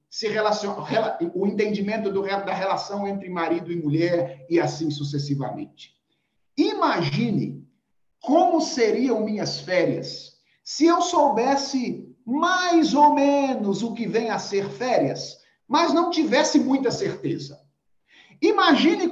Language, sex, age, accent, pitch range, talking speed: Portuguese, male, 50-69, Brazilian, 195-315 Hz, 105 wpm